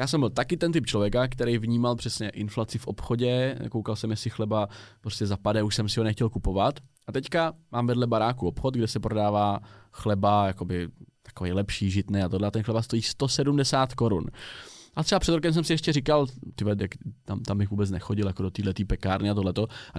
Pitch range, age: 110-145 Hz, 20-39